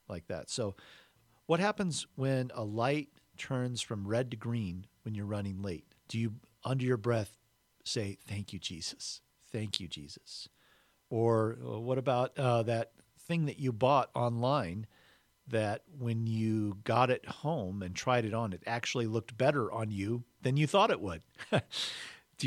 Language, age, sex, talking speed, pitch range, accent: English, 50-69, male, 165 wpm, 100-125 Hz, American